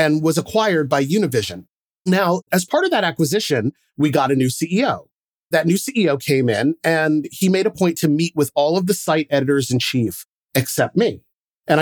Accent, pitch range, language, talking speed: American, 130-175 Hz, English, 200 wpm